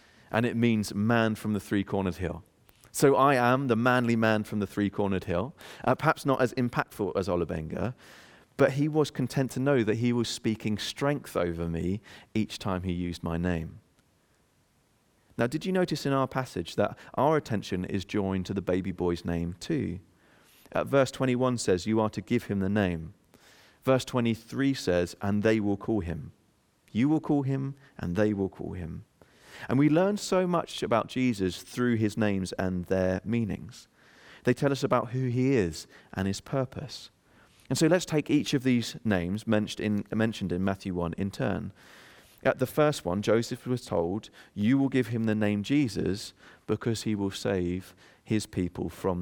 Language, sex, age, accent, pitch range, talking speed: English, male, 30-49, British, 95-130 Hz, 180 wpm